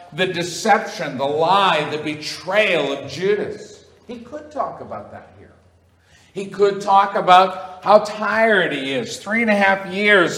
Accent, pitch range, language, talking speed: American, 140-195 Hz, English, 155 wpm